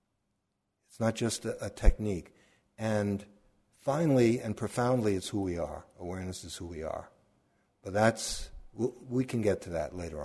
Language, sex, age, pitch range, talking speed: English, male, 60-79, 100-120 Hz, 165 wpm